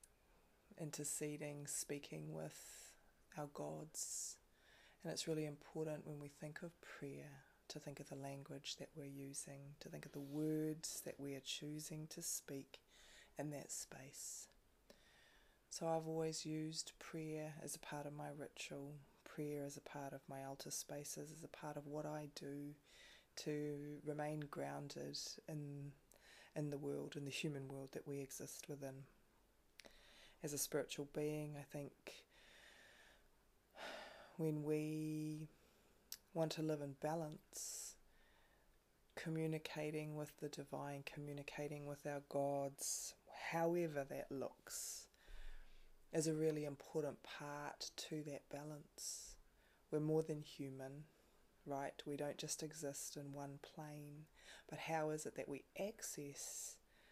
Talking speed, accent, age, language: 135 wpm, Australian, 20-39, English